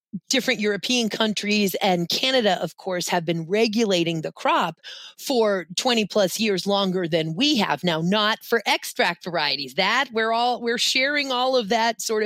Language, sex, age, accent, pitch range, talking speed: English, female, 40-59, American, 185-240 Hz, 165 wpm